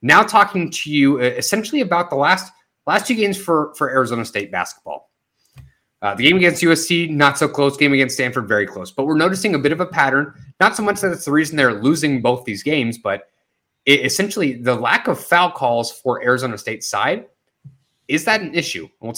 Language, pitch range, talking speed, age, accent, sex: English, 115-145 Hz, 210 wpm, 30-49, American, male